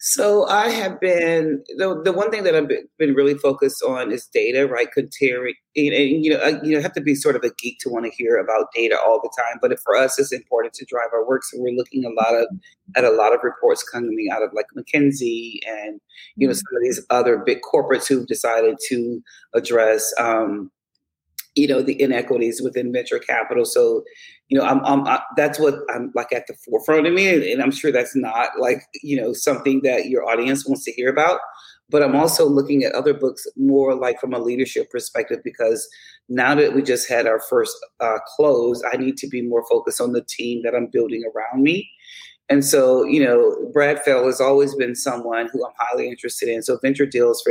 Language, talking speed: English, 220 wpm